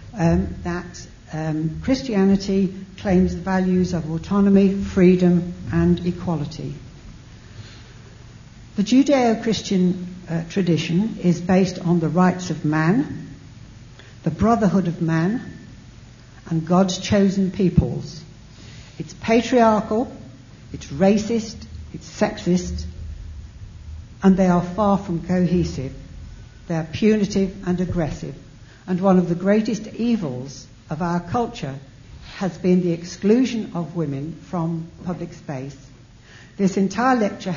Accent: British